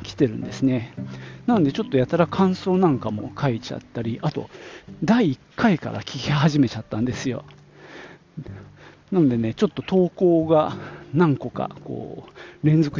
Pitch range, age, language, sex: 115-165 Hz, 40-59, Japanese, male